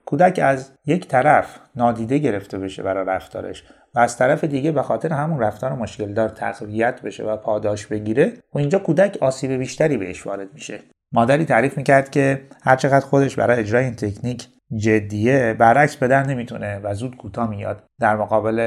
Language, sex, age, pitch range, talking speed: Persian, male, 30-49, 105-145 Hz, 170 wpm